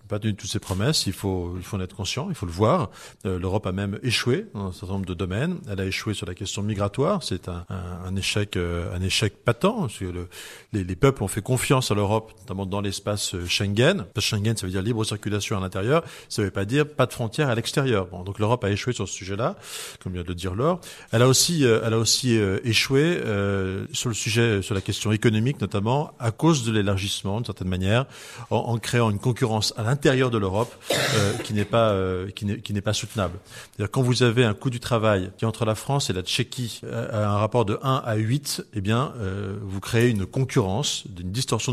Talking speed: 245 wpm